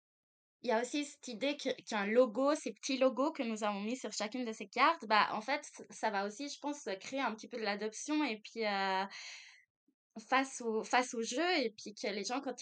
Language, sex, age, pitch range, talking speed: French, female, 20-39, 205-250 Hz, 230 wpm